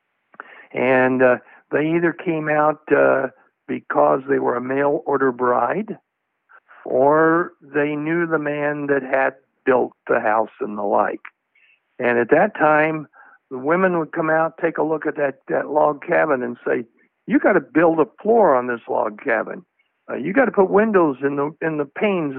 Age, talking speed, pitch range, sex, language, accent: 60-79, 175 wpm, 140-185 Hz, male, English, American